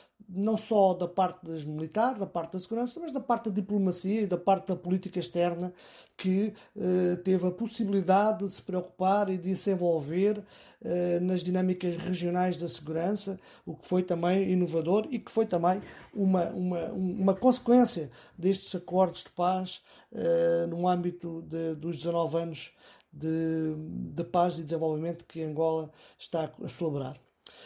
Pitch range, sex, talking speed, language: 175-210 Hz, male, 155 wpm, Portuguese